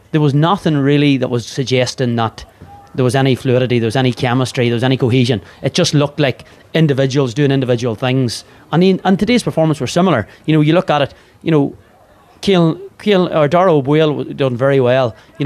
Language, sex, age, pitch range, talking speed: English, male, 30-49, 120-145 Hz, 200 wpm